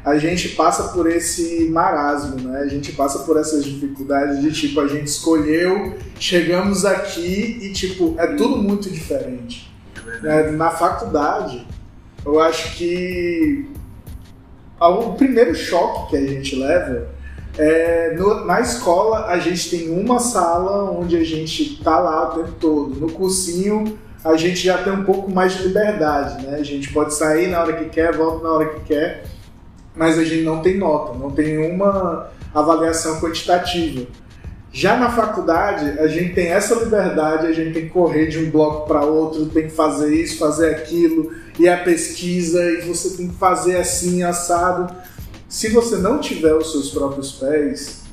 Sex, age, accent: male, 20-39, Brazilian